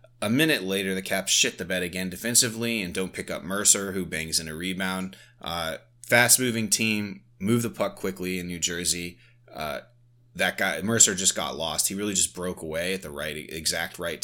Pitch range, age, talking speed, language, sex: 85-110 Hz, 20-39, 200 wpm, English, male